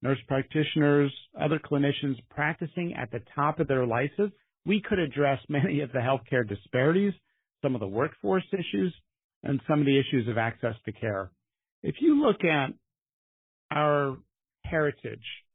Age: 50-69